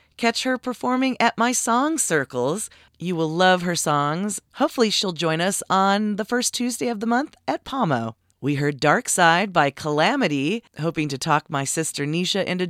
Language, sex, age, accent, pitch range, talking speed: English, female, 40-59, American, 145-205 Hz, 180 wpm